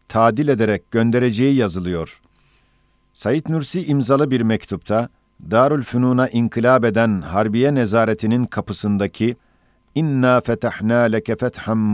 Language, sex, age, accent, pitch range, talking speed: Turkish, male, 50-69, native, 105-125 Hz, 100 wpm